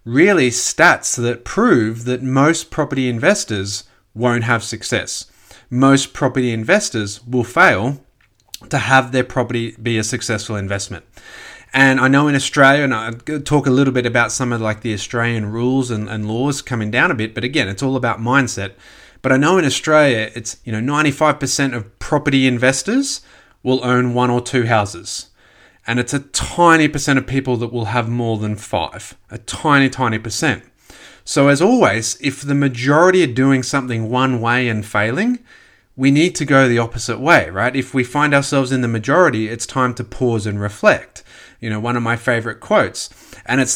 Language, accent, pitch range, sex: English, Australian, 115-140 Hz, male